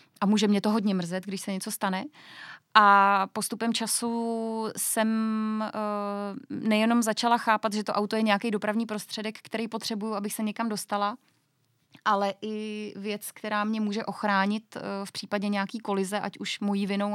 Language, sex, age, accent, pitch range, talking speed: Czech, female, 20-39, native, 195-220 Hz, 165 wpm